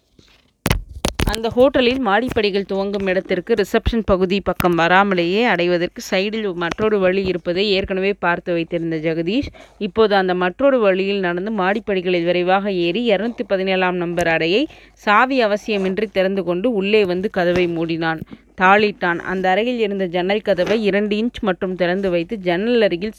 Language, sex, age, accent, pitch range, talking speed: Tamil, female, 20-39, native, 180-220 Hz, 130 wpm